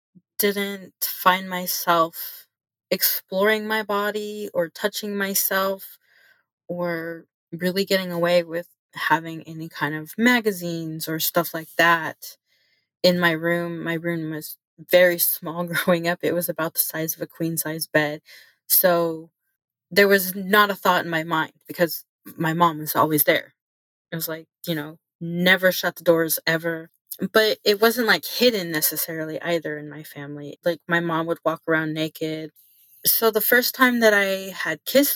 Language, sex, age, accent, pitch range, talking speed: English, female, 20-39, American, 165-195 Hz, 160 wpm